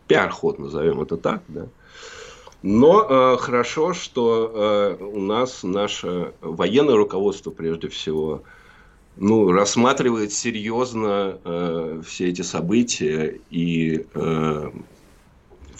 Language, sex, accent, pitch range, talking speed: Russian, male, native, 85-105 Hz, 100 wpm